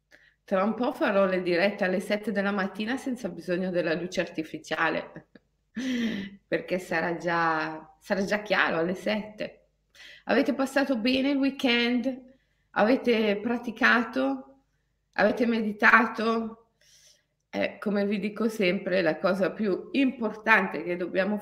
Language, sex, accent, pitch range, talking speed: Italian, female, native, 185-250 Hz, 120 wpm